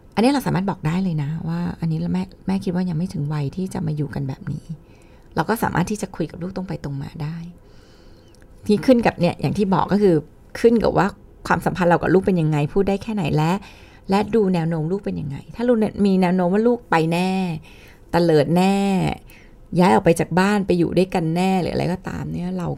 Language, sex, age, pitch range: Thai, female, 20-39, 155-195 Hz